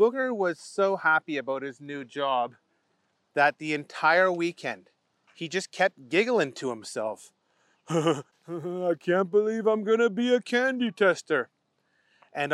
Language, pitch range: English, 145-245 Hz